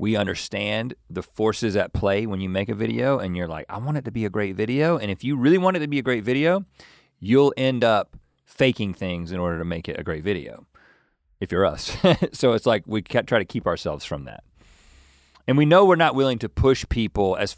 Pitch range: 90-130 Hz